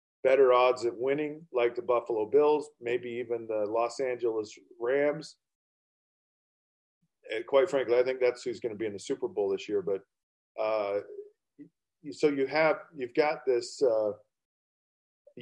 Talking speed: 150 wpm